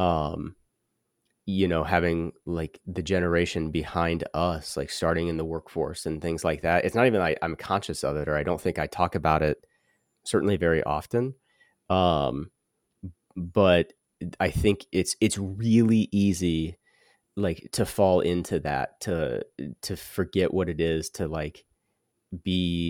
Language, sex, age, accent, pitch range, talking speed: English, male, 30-49, American, 80-100 Hz, 155 wpm